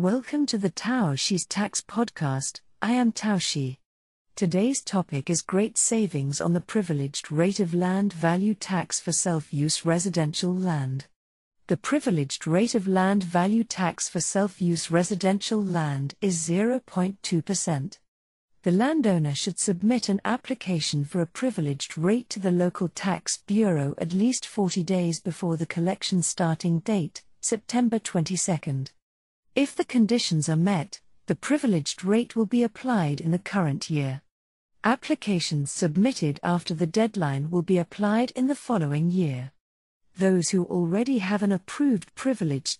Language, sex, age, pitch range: Chinese, female, 50-69, 160-210 Hz